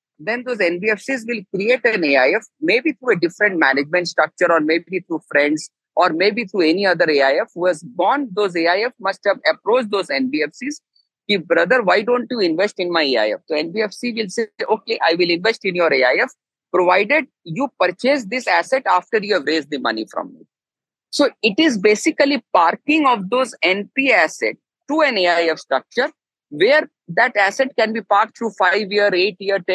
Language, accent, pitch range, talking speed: English, Indian, 180-250 Hz, 180 wpm